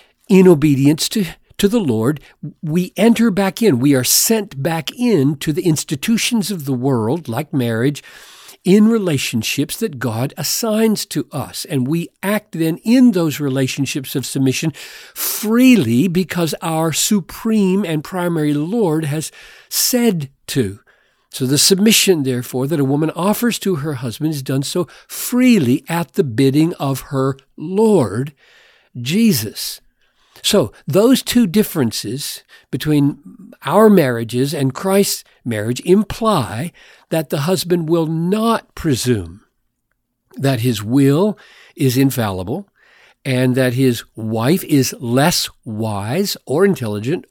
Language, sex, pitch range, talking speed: English, male, 130-195 Hz, 130 wpm